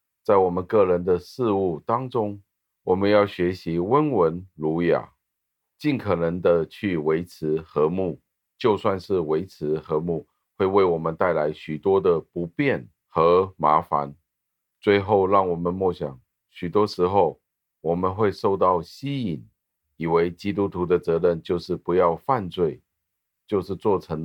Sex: male